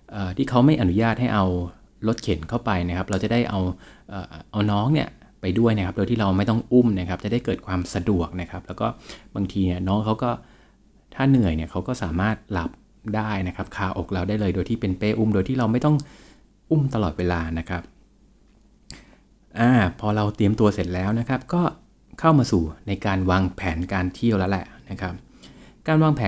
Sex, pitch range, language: male, 90-115 Hz, Thai